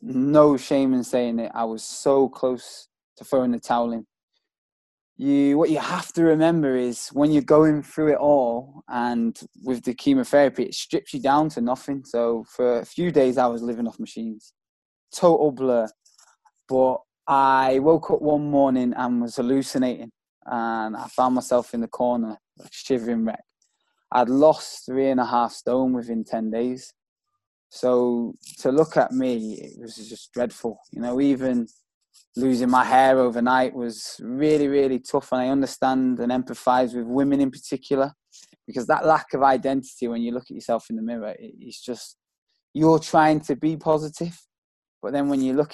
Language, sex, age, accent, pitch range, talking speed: English, male, 20-39, British, 120-145 Hz, 175 wpm